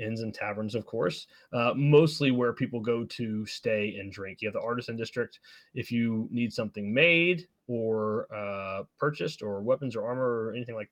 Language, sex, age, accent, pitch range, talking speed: English, male, 20-39, American, 105-130 Hz, 185 wpm